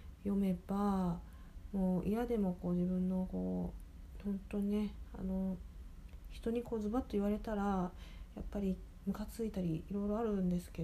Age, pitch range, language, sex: 40-59, 160-210 Hz, Japanese, female